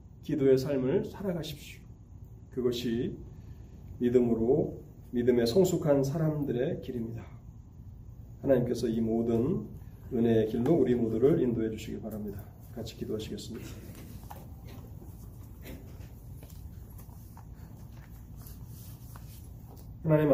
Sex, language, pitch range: male, Korean, 110-130 Hz